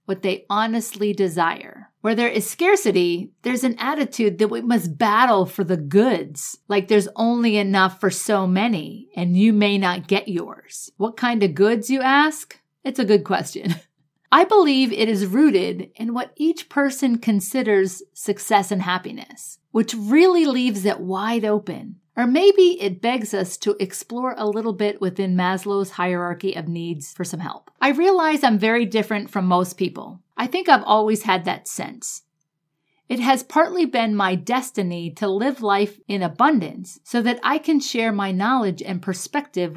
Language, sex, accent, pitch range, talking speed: English, female, American, 185-240 Hz, 170 wpm